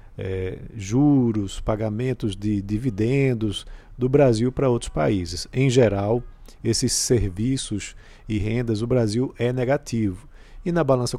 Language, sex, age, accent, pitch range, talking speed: Portuguese, male, 50-69, Brazilian, 110-135 Hz, 120 wpm